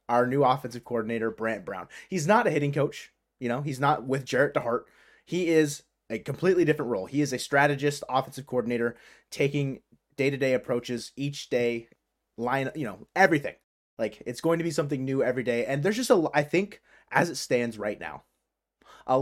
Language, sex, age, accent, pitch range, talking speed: English, male, 20-39, American, 120-155 Hz, 190 wpm